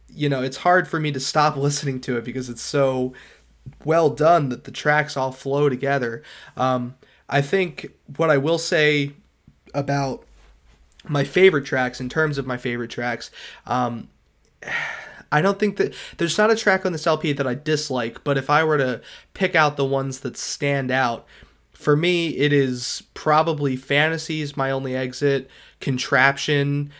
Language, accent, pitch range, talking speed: English, American, 130-150 Hz, 170 wpm